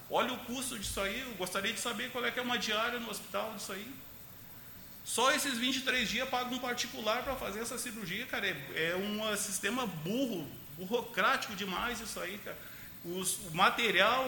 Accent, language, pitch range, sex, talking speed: Brazilian, Portuguese, 195-235 Hz, male, 185 wpm